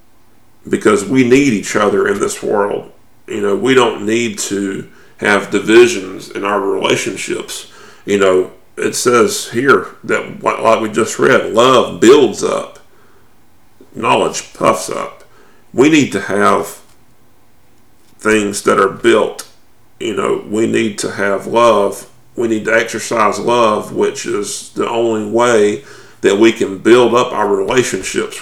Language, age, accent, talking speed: English, 40-59, American, 140 wpm